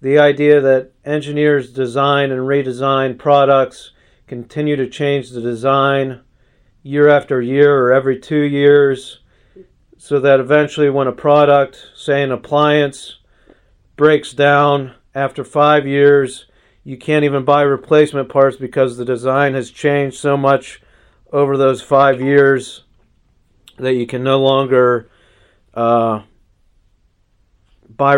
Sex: male